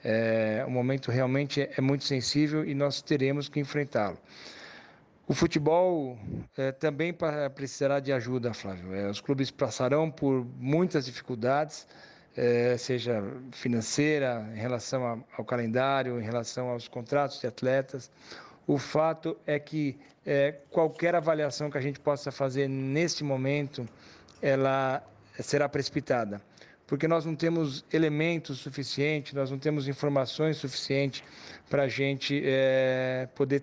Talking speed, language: 130 wpm, Portuguese